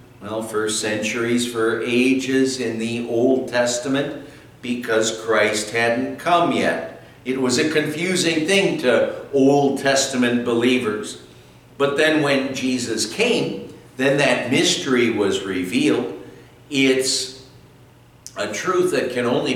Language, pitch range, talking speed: English, 115-150 Hz, 120 wpm